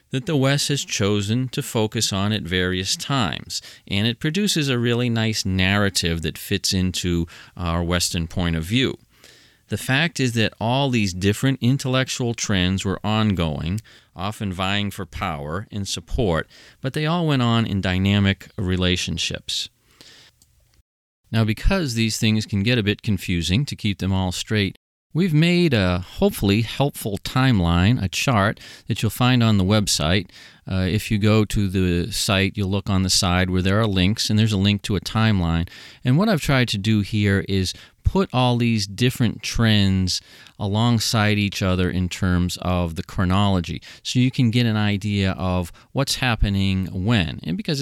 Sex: male